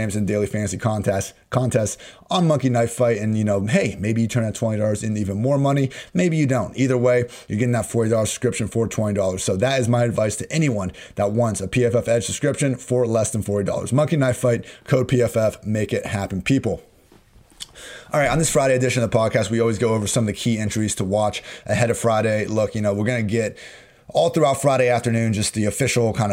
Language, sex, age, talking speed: English, male, 30-49, 220 wpm